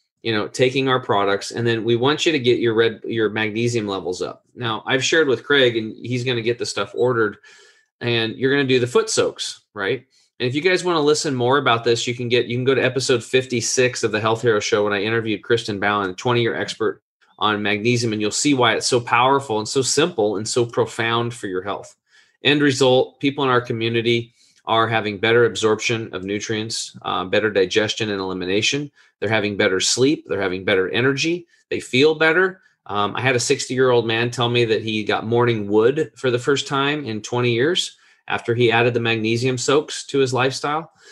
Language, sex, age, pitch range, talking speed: English, male, 30-49, 110-130 Hz, 215 wpm